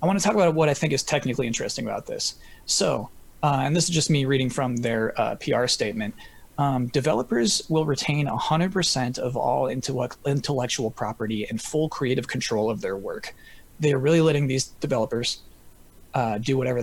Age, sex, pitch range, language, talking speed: 20-39, male, 125-160 Hz, English, 185 wpm